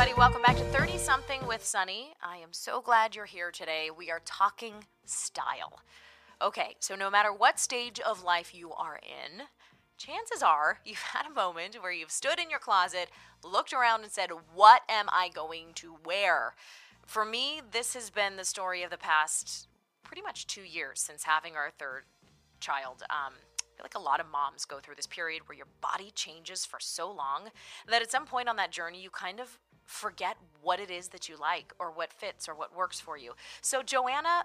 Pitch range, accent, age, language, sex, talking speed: 165-225 Hz, American, 20-39, English, female, 200 wpm